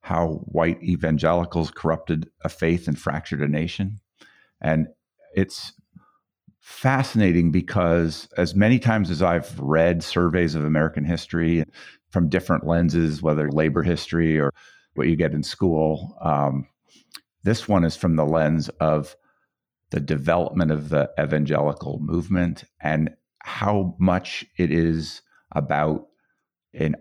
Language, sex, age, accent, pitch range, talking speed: English, male, 50-69, American, 75-85 Hz, 125 wpm